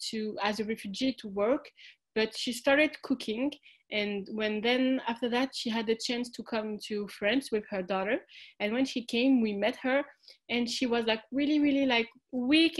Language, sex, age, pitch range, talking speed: English, female, 30-49, 220-275 Hz, 190 wpm